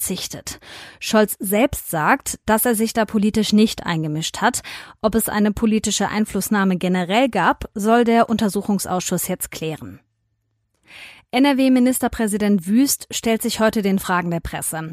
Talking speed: 135 wpm